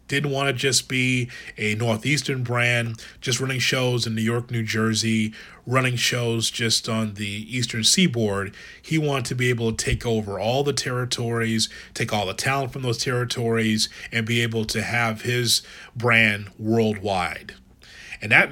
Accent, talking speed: American, 165 wpm